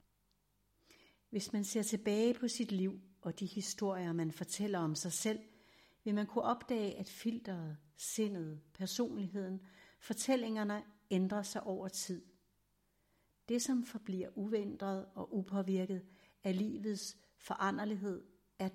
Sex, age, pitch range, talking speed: female, 60-79, 175-210 Hz, 120 wpm